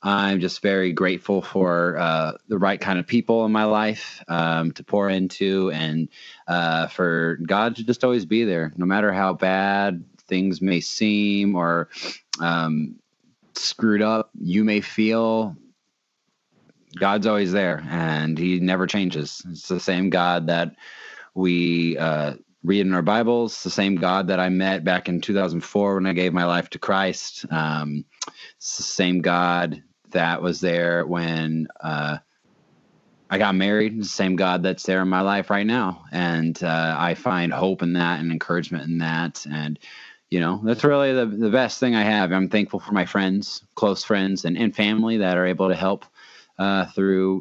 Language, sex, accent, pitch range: English, male, American, 85-100 Hz